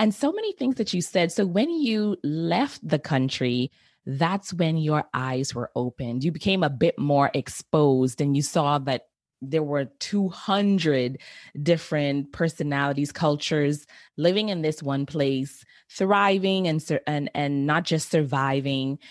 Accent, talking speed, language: American, 150 wpm, English